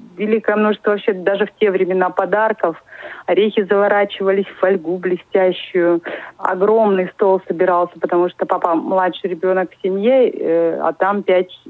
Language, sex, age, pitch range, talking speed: Russian, female, 30-49, 185-225 Hz, 135 wpm